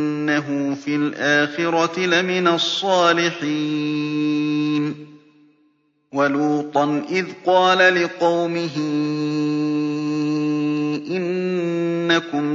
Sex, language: male, Arabic